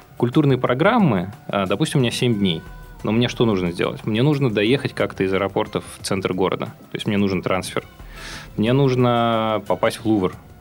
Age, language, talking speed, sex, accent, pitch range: 20-39, Russian, 175 wpm, male, native, 100-135 Hz